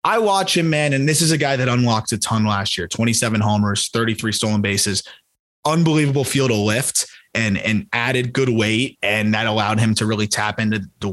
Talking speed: 205 wpm